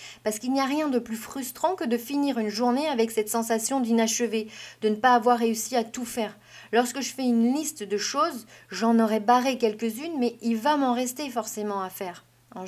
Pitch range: 210-250 Hz